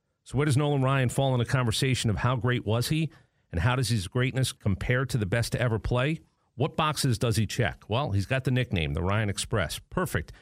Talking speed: 230 wpm